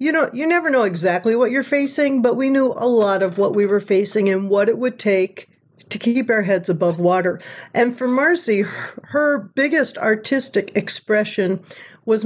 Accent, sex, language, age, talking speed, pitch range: American, female, English, 50-69, 185 wpm, 195-255 Hz